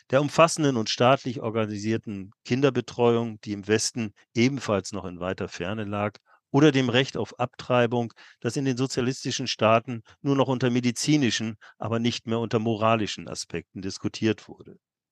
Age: 40-59